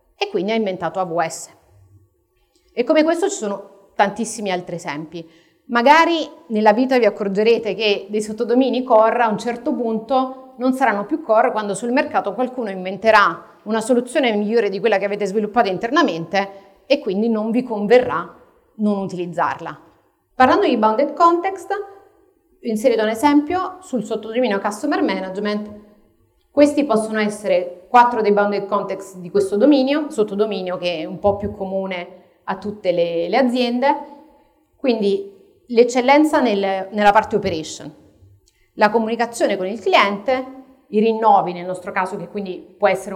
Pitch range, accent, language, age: 195-260 Hz, native, Italian, 40-59